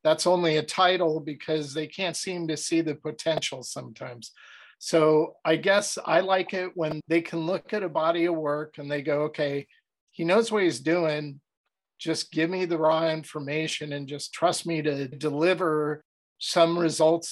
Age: 50-69